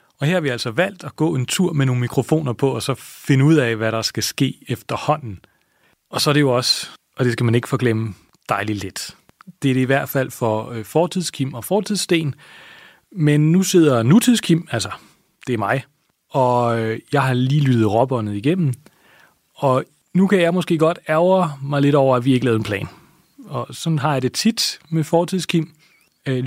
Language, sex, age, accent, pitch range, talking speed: Danish, male, 30-49, native, 125-165 Hz, 200 wpm